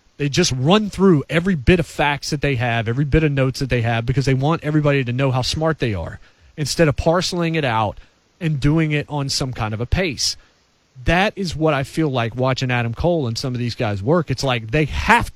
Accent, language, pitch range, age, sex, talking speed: American, English, 135-185 Hz, 30-49, male, 240 wpm